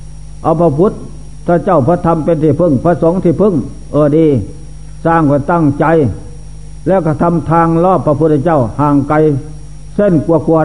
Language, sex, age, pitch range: Thai, male, 60-79, 150-175 Hz